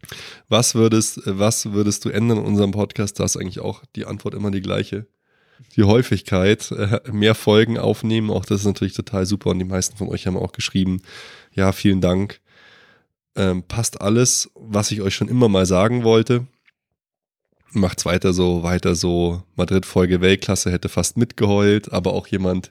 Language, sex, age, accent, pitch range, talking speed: German, male, 20-39, German, 95-115 Hz, 170 wpm